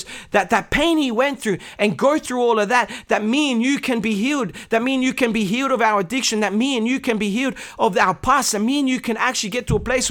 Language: English